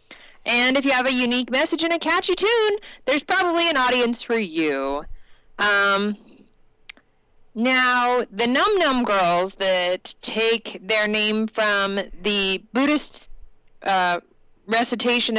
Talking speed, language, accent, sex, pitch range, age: 125 wpm, English, American, female, 205-265 Hz, 30-49